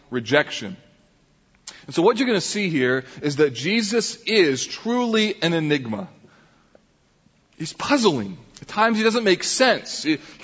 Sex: male